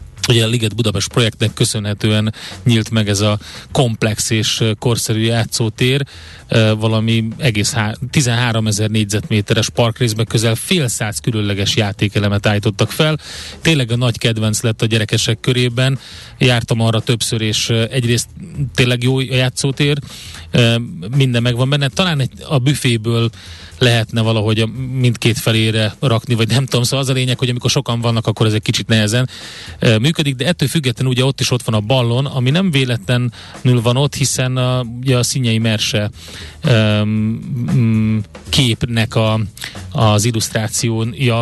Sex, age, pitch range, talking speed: male, 30-49, 110-130 Hz, 140 wpm